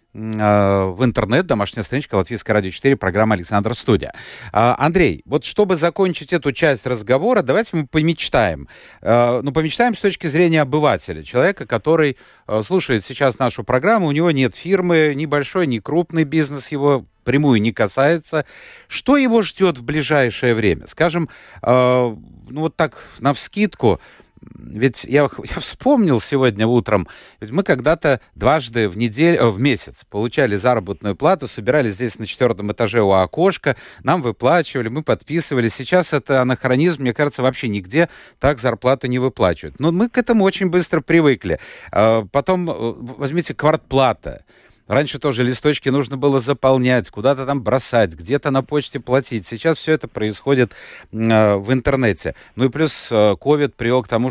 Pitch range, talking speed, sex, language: 115-155 Hz, 145 wpm, male, Russian